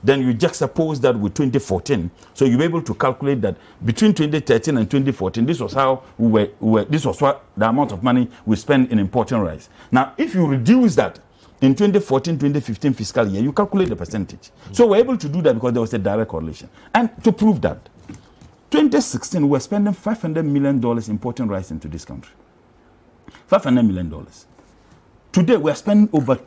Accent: Nigerian